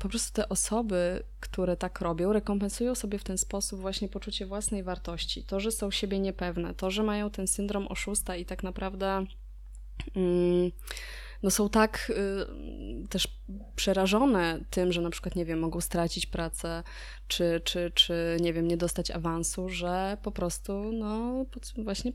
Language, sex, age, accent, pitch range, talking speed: Polish, female, 20-39, native, 175-210 Hz, 155 wpm